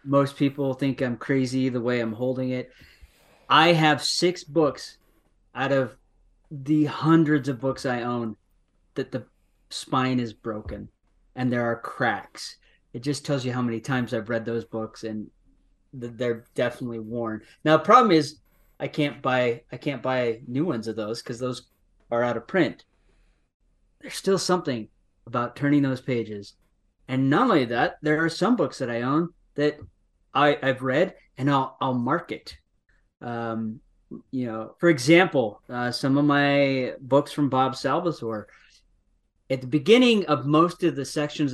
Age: 30-49